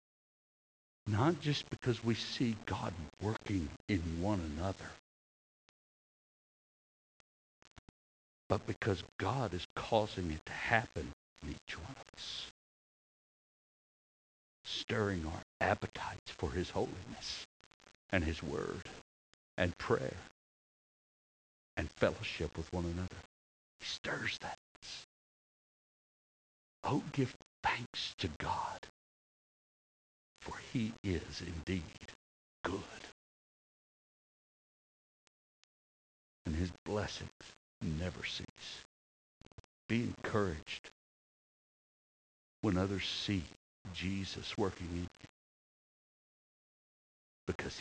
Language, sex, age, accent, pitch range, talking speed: English, male, 60-79, American, 70-105 Hz, 85 wpm